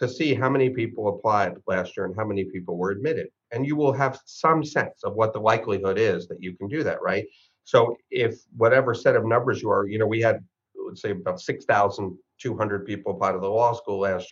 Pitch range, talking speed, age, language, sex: 100-125 Hz, 225 wpm, 50-69, English, male